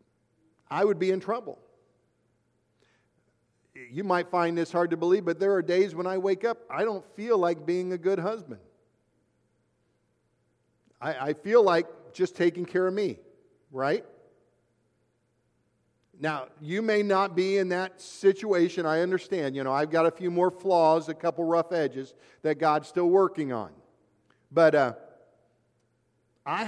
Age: 50-69